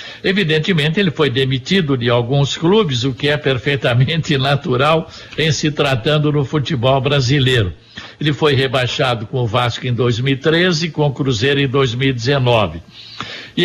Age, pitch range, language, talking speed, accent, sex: 60-79, 130-165 Hz, Portuguese, 145 wpm, Brazilian, male